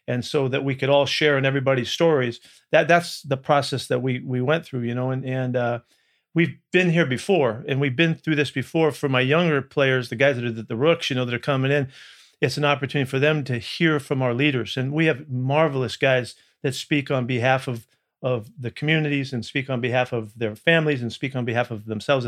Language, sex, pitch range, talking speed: English, male, 125-150 Hz, 235 wpm